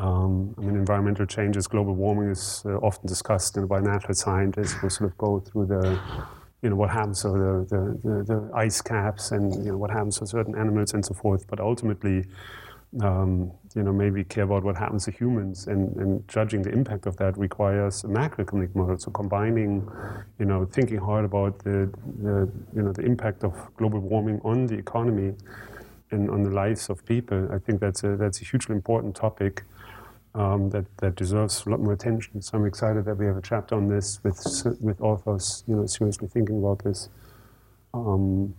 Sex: male